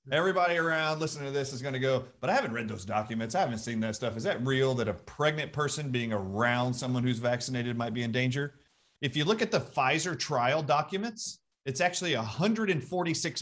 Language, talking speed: English, 210 wpm